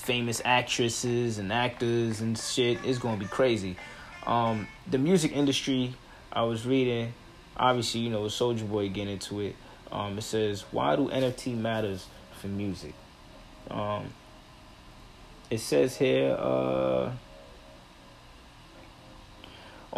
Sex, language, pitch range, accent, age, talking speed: male, English, 100-130 Hz, American, 20-39, 115 wpm